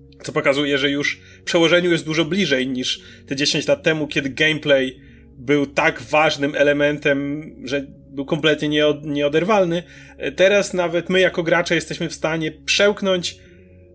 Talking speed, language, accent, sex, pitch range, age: 140 wpm, Polish, native, male, 130-160 Hz, 30-49